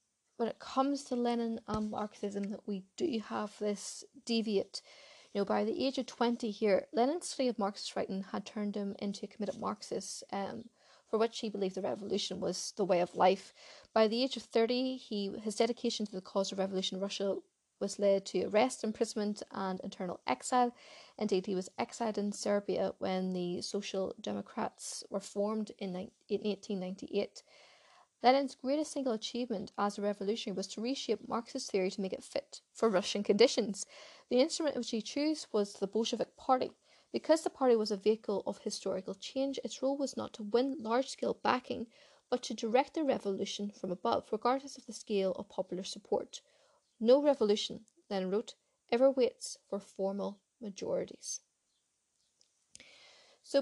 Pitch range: 200-255 Hz